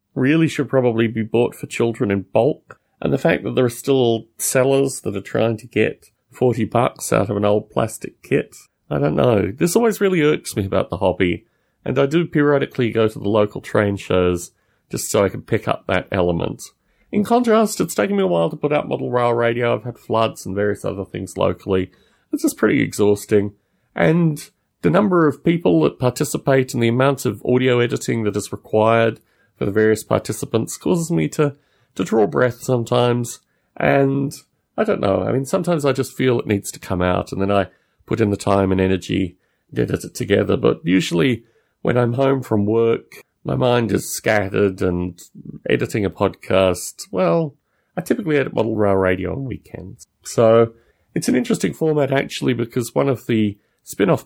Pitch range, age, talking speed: 100-135 Hz, 30-49, 190 wpm